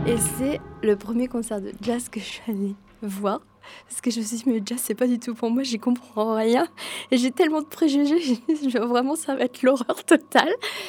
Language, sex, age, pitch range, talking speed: French, female, 20-39, 205-250 Hz, 230 wpm